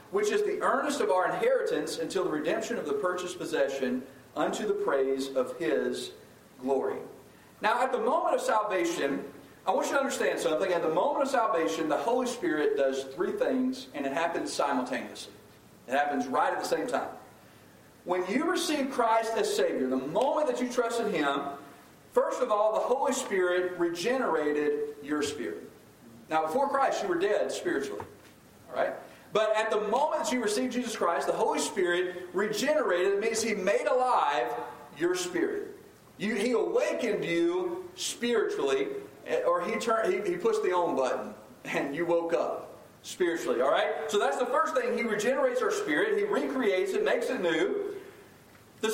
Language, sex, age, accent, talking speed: English, male, 40-59, American, 175 wpm